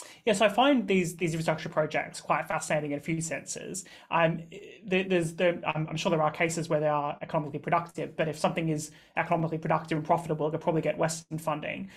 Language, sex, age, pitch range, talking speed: English, male, 20-39, 155-175 Hz, 215 wpm